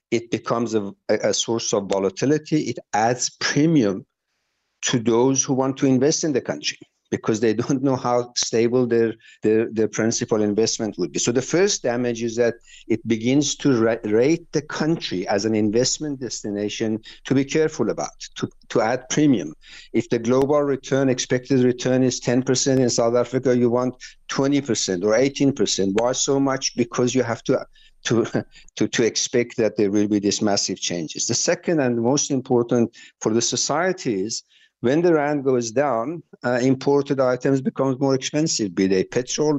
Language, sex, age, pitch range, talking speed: English, male, 60-79, 110-135 Hz, 170 wpm